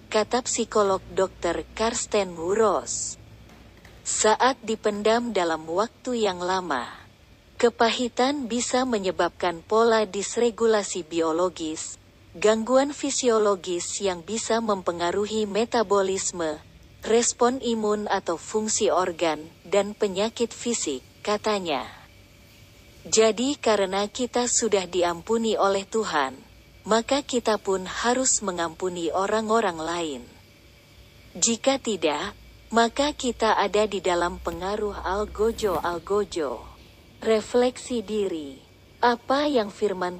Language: Indonesian